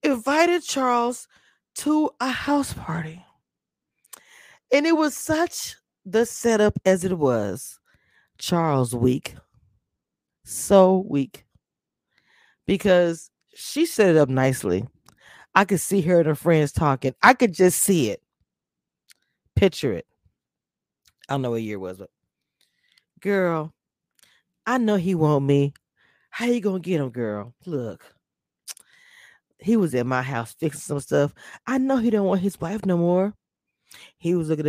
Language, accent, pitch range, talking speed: English, American, 145-225 Hz, 140 wpm